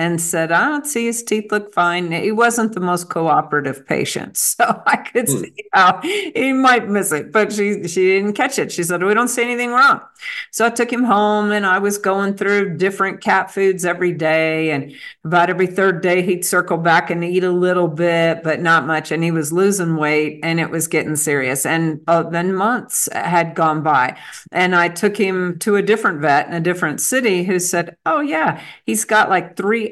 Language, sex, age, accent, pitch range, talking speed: English, female, 50-69, American, 170-210 Hz, 210 wpm